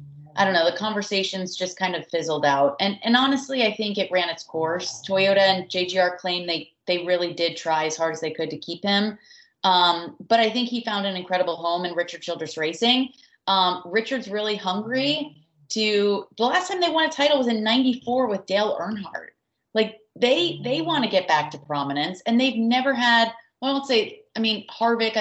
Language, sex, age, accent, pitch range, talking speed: English, female, 30-49, American, 170-225 Hz, 215 wpm